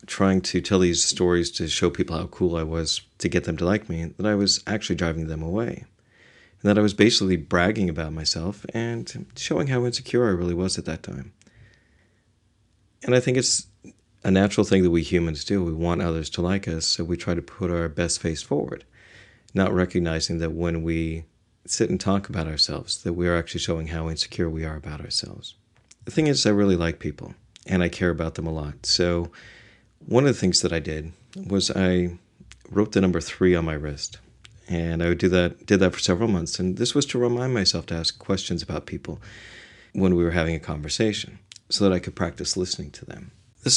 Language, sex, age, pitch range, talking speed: English, male, 40-59, 85-105 Hz, 215 wpm